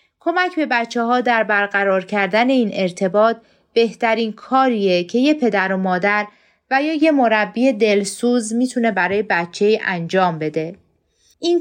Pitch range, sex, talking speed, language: 190-250 Hz, female, 145 wpm, Persian